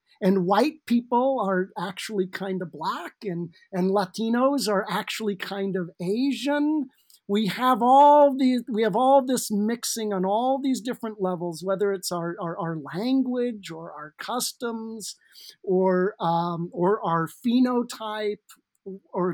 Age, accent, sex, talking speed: 50-69, American, male, 140 wpm